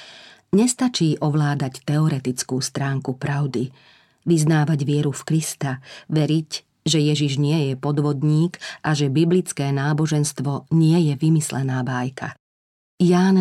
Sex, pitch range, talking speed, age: female, 145-175 Hz, 105 wpm, 40-59